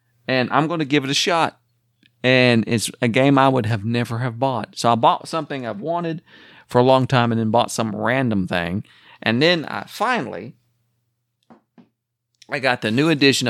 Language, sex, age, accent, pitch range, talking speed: English, male, 40-59, American, 105-130 Hz, 185 wpm